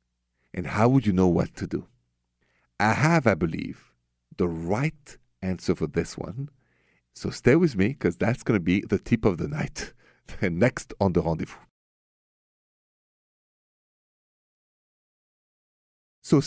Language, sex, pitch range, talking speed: English, male, 80-115 Hz, 135 wpm